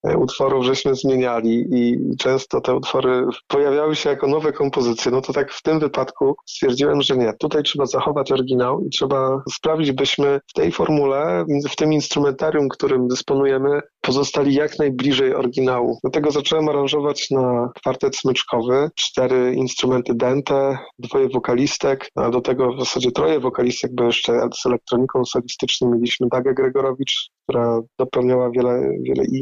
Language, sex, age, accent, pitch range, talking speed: Polish, male, 30-49, native, 130-145 Hz, 145 wpm